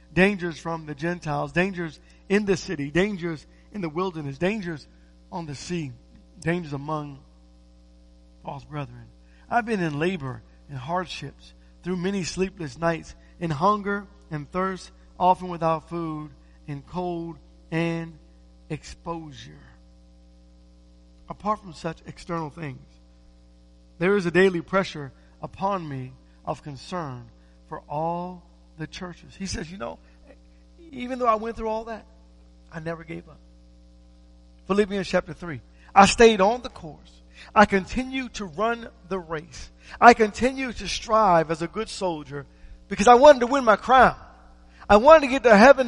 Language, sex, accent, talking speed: English, male, American, 145 wpm